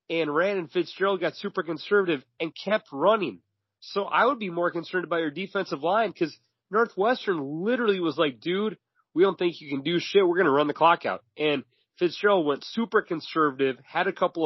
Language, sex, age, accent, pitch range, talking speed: English, male, 30-49, American, 130-170 Hz, 200 wpm